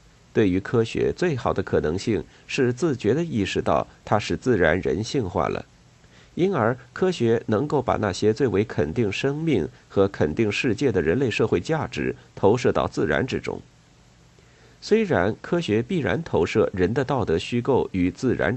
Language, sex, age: Chinese, male, 50-69